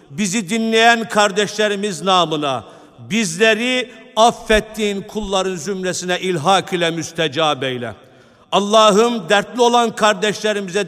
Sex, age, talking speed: male, 50-69, 90 wpm